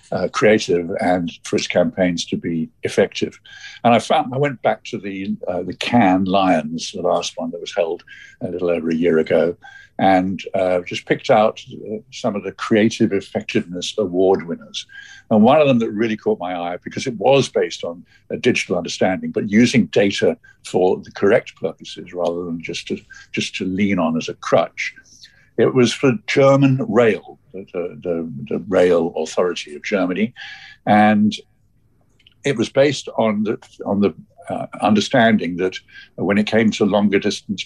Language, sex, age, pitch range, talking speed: English, male, 60-79, 90-125 Hz, 175 wpm